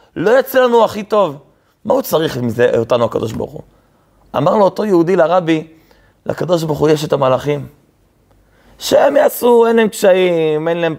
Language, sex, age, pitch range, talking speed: Hebrew, male, 30-49, 125-175 Hz, 175 wpm